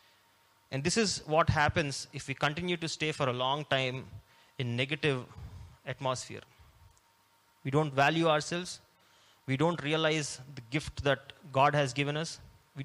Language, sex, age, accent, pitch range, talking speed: Telugu, male, 20-39, native, 125-150 Hz, 150 wpm